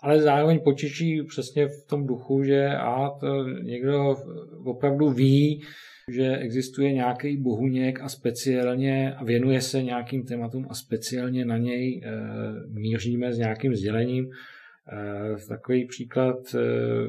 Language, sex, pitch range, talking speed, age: Czech, male, 110-130 Hz, 115 wpm, 40-59